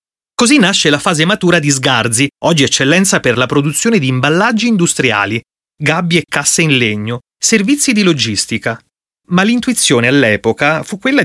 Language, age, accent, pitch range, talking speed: Italian, 30-49, native, 130-195 Hz, 150 wpm